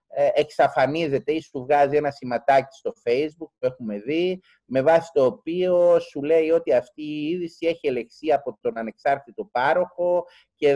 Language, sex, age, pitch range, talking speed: Greek, male, 30-49, 125-185 Hz, 155 wpm